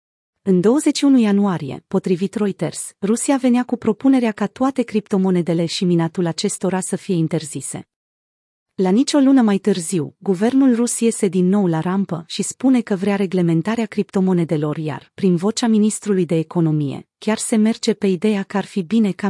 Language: Romanian